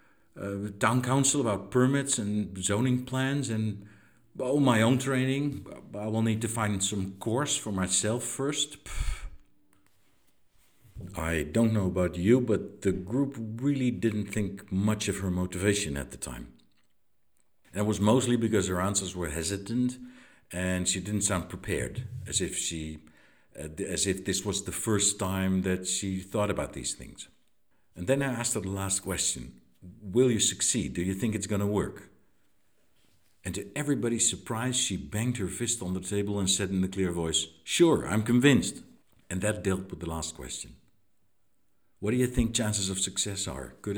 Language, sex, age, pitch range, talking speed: English, male, 60-79, 95-120 Hz, 170 wpm